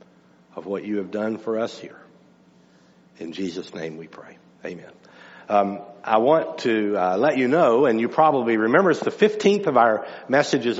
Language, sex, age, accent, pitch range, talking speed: English, male, 60-79, American, 120-185 Hz, 180 wpm